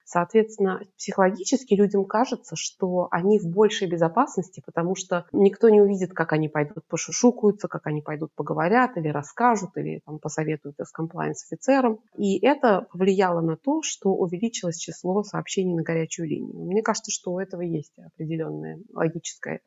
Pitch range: 165-205 Hz